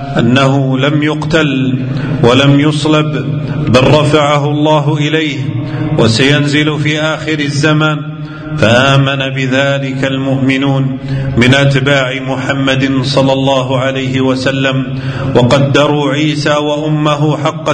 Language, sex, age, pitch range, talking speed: Arabic, male, 40-59, 135-145 Hz, 90 wpm